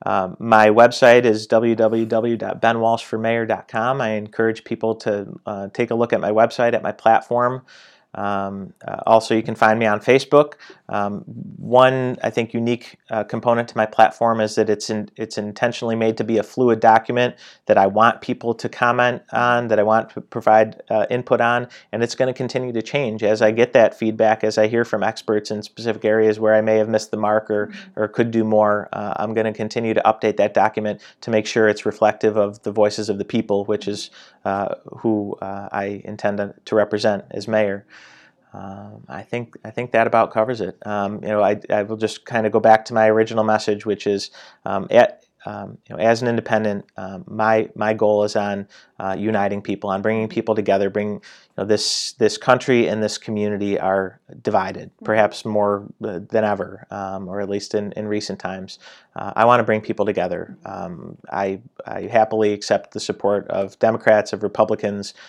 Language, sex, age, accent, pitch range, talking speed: English, male, 30-49, American, 105-115 Hz, 200 wpm